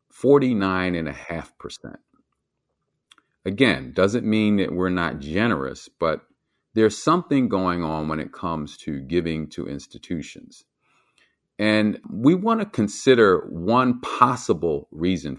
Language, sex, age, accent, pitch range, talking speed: English, male, 40-59, American, 80-110 Hz, 105 wpm